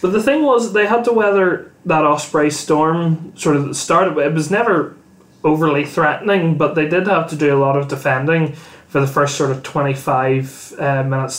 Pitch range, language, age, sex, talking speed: 135-160 Hz, English, 20-39, male, 195 wpm